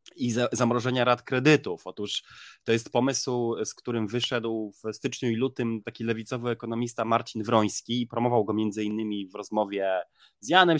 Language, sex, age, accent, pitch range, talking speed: Polish, male, 20-39, native, 100-120 Hz, 160 wpm